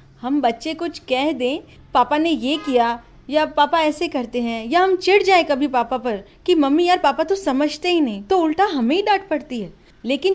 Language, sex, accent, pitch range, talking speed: Hindi, female, native, 230-355 Hz, 170 wpm